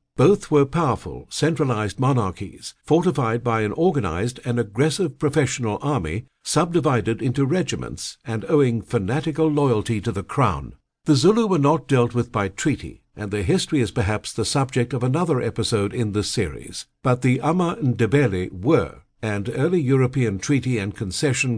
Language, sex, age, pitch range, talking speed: English, male, 60-79, 115-155 Hz, 155 wpm